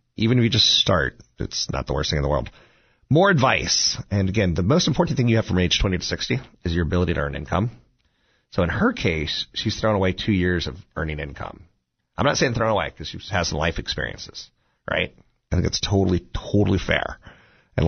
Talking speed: 220 wpm